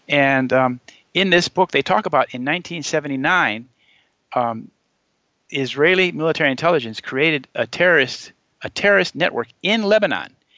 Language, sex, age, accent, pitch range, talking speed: English, male, 50-69, American, 120-150 Hz, 125 wpm